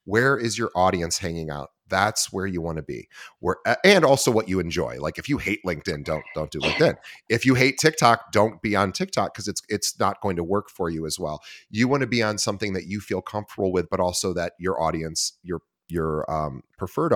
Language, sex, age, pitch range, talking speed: English, male, 30-49, 90-115 Hz, 235 wpm